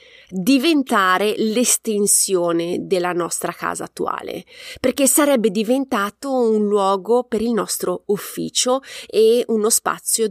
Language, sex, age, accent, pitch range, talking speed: Italian, female, 30-49, native, 180-245 Hz, 105 wpm